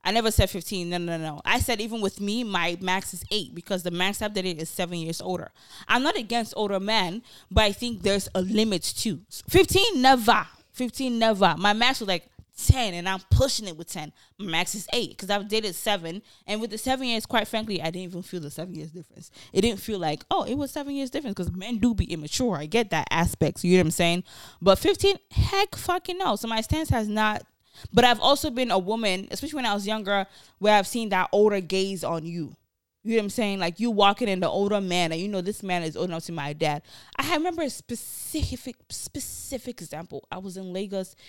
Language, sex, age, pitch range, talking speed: English, female, 20-39, 180-235 Hz, 235 wpm